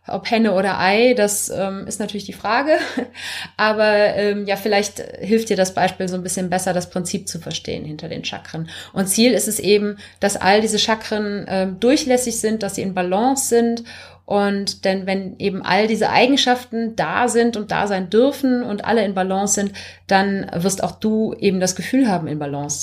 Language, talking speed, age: German, 195 wpm, 30-49